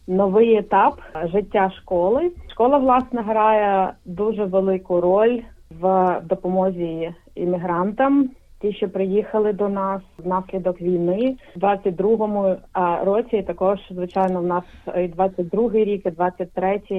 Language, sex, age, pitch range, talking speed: Ukrainian, female, 30-49, 180-210 Hz, 115 wpm